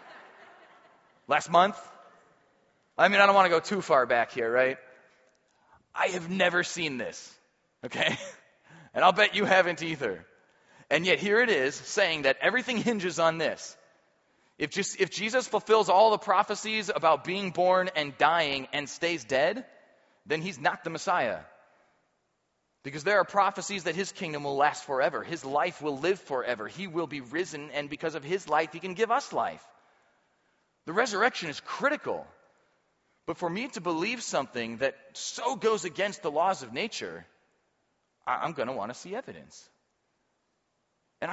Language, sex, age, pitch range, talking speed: English, male, 30-49, 155-215 Hz, 165 wpm